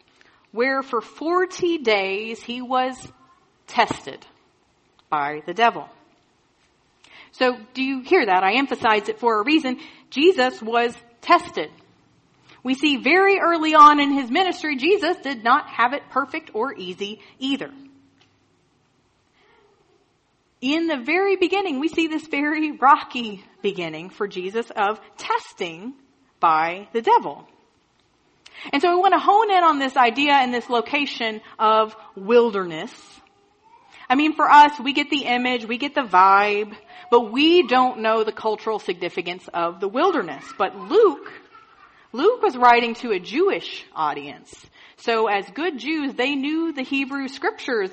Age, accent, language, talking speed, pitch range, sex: 40-59, American, English, 140 wpm, 220-340 Hz, female